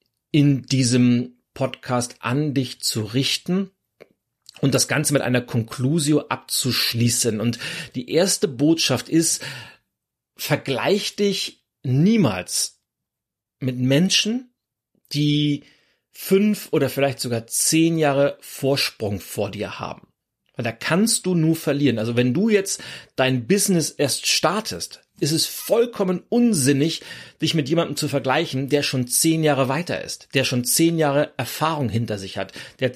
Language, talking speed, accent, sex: German, 135 wpm, German, male